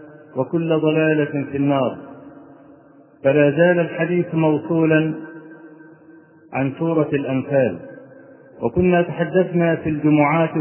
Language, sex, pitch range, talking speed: Arabic, male, 155-180 Hz, 85 wpm